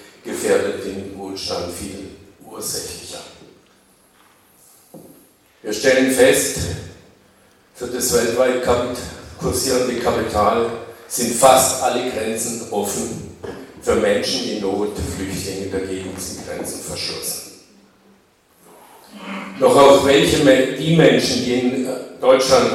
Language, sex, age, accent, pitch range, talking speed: German, male, 50-69, German, 105-140 Hz, 100 wpm